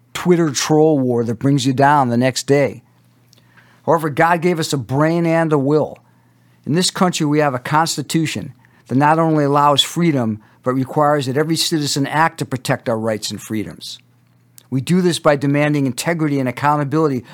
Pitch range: 125-155 Hz